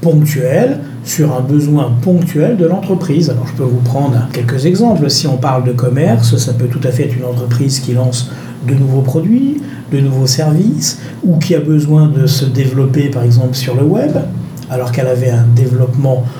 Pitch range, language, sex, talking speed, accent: 130-165 Hz, French, male, 190 wpm, French